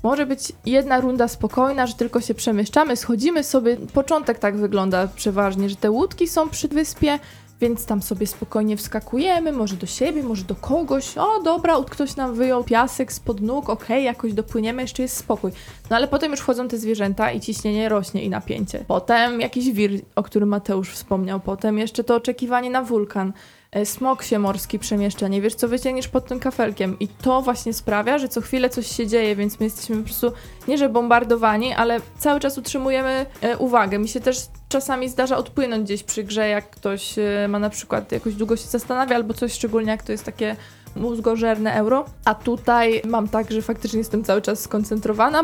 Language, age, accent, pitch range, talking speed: Polish, 20-39, native, 215-260 Hz, 190 wpm